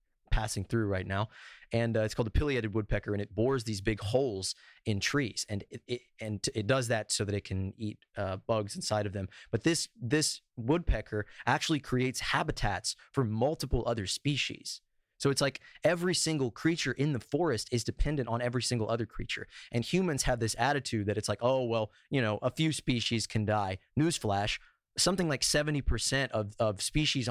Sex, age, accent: male, 20-39, American